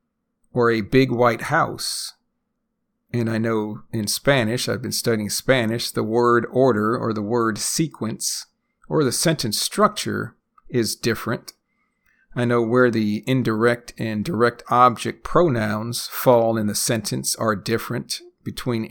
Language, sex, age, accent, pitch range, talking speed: English, male, 50-69, American, 110-135 Hz, 135 wpm